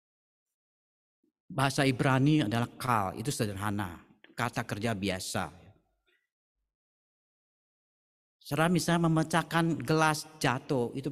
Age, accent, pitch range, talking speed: 40-59, native, 130-200 Hz, 80 wpm